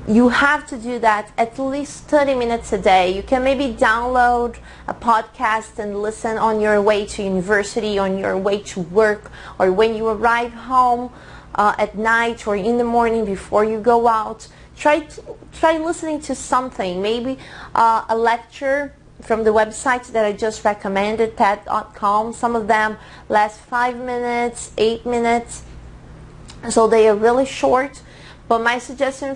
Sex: female